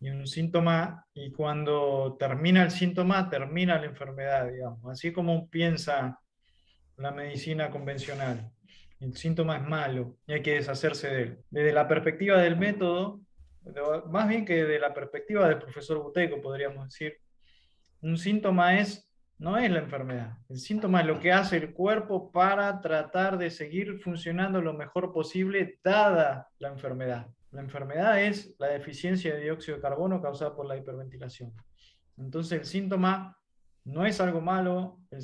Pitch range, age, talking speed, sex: 140-180 Hz, 20-39, 155 wpm, male